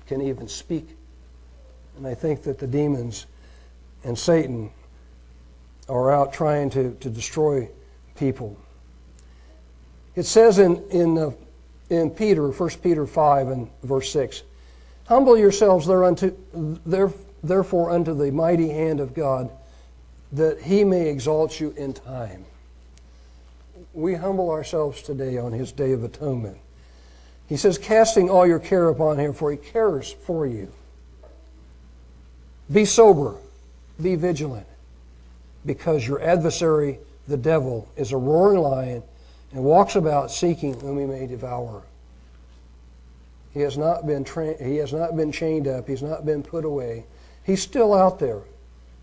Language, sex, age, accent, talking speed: English, male, 60-79, American, 135 wpm